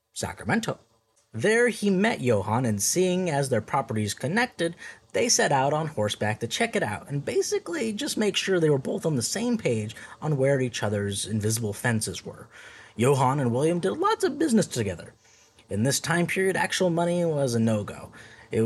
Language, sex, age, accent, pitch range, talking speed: English, male, 20-39, American, 115-175 Hz, 185 wpm